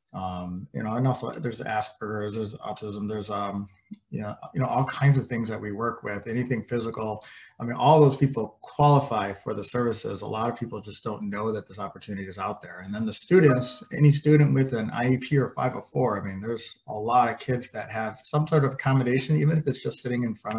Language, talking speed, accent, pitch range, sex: English, 225 wpm, American, 100-135 Hz, male